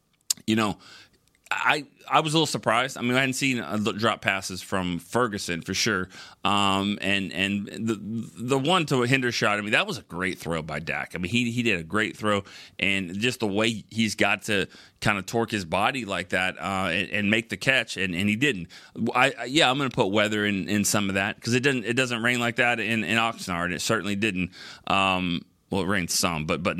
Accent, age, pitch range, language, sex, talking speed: American, 30-49, 95-115 Hz, English, male, 235 wpm